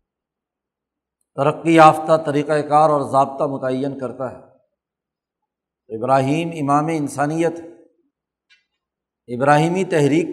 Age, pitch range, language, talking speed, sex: 60-79, 145-165 Hz, Urdu, 80 wpm, male